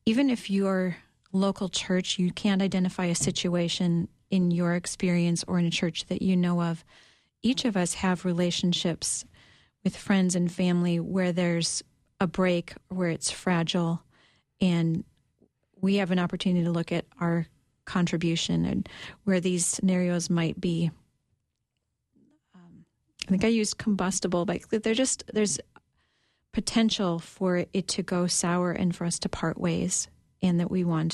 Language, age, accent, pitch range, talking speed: English, 40-59, American, 175-195 Hz, 150 wpm